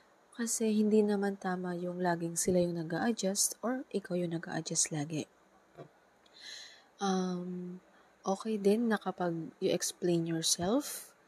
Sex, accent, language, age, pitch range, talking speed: female, native, Filipino, 20-39, 165-190 Hz, 110 wpm